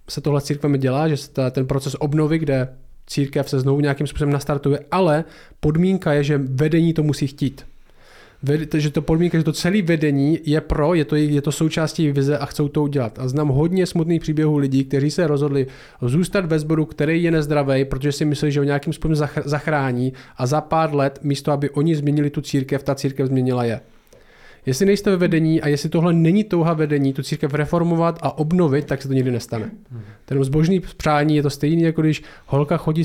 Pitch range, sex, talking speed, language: 135-155 Hz, male, 200 wpm, Czech